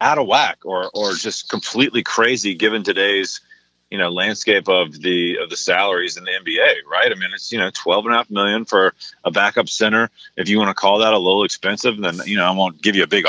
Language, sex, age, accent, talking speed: English, male, 30-49, American, 230 wpm